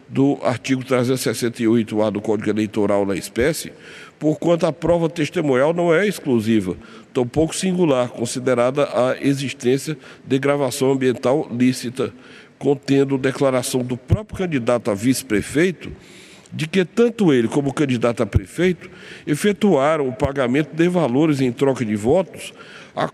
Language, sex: Portuguese, male